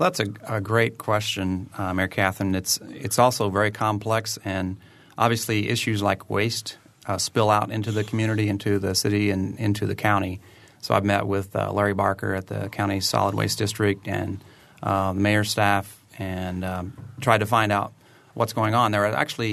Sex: male